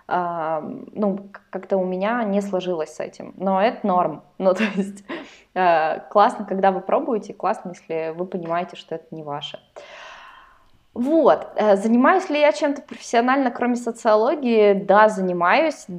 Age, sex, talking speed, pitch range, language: 20-39, female, 145 wpm, 175-210 Hz, Russian